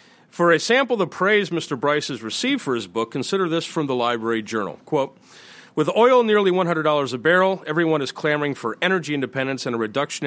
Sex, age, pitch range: male, 40-59, 125-165 Hz